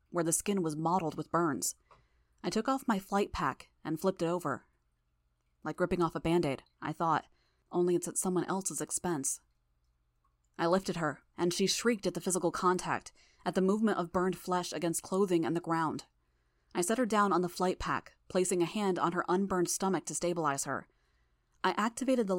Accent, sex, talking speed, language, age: American, female, 195 wpm, English, 20-39